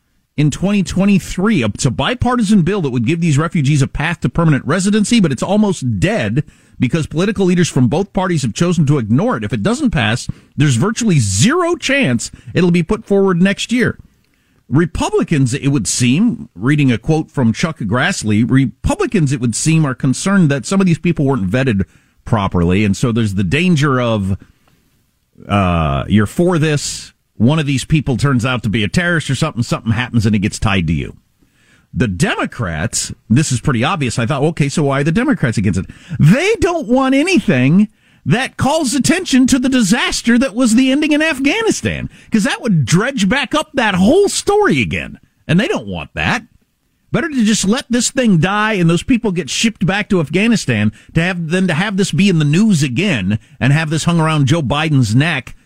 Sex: male